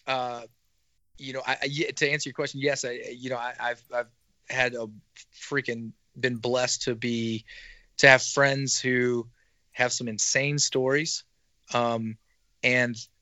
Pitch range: 115-135 Hz